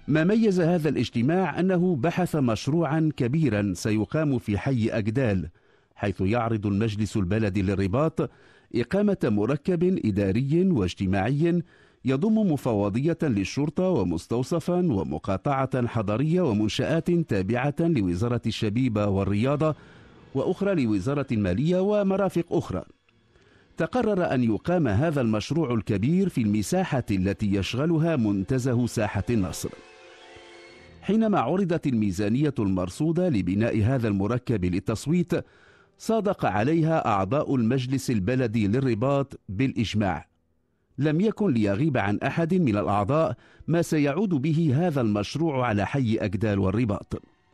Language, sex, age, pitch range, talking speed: English, male, 50-69, 105-160 Hz, 100 wpm